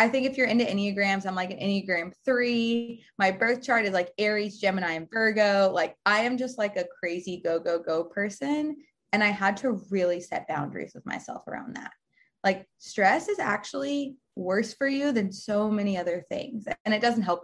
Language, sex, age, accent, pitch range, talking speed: English, female, 20-39, American, 180-230 Hz, 200 wpm